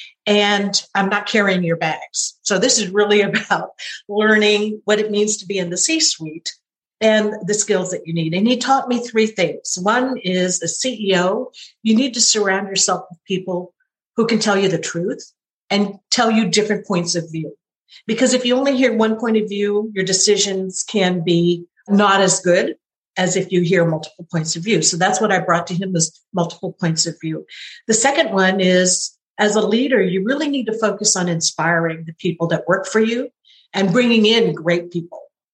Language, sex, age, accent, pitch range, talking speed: English, female, 50-69, American, 180-215 Hz, 200 wpm